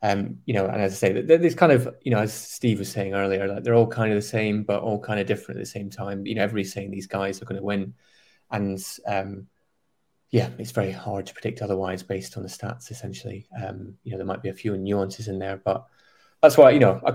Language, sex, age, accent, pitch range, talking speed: English, male, 20-39, British, 100-115 Hz, 260 wpm